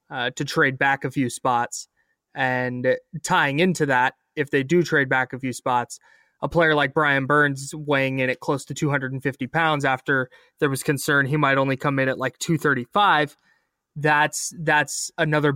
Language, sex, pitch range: English, male, 130-155 Hz